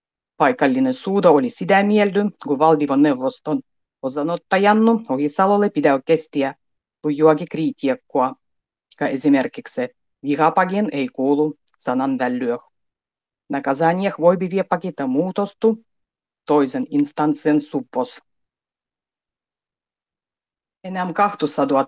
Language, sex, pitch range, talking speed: Finnish, female, 140-190 Hz, 80 wpm